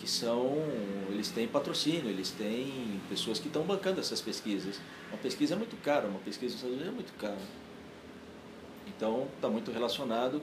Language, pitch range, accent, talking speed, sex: Portuguese, 105-145 Hz, Brazilian, 175 wpm, male